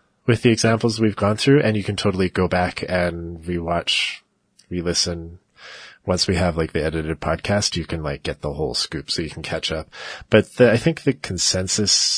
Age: 30-49